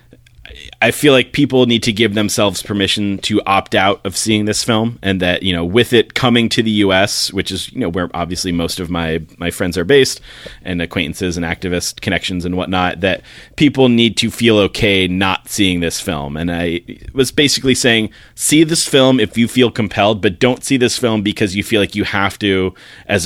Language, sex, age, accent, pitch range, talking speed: English, male, 30-49, American, 90-110 Hz, 210 wpm